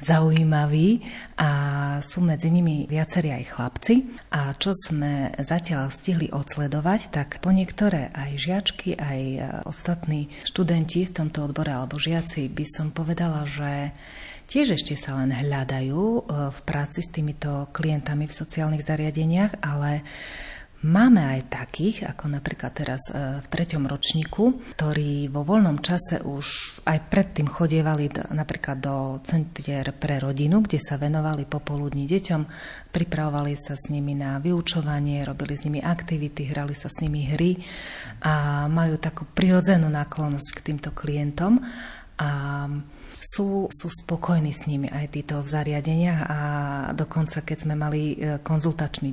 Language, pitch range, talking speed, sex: Slovak, 145-165 Hz, 135 wpm, female